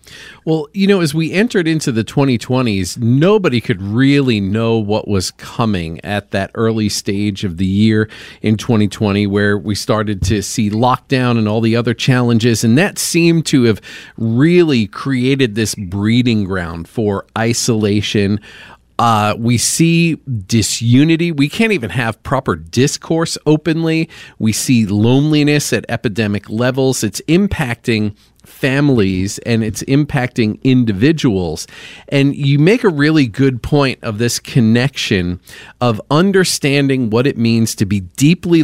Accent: American